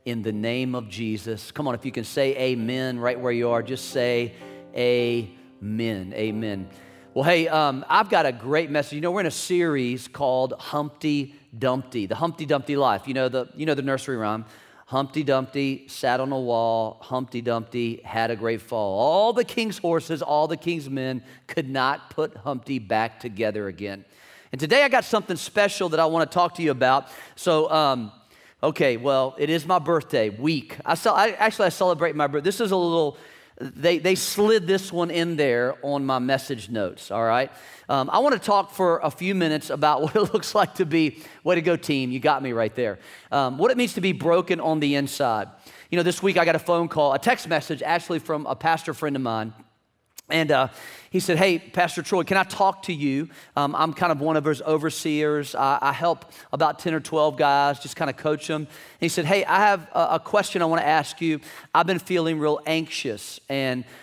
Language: English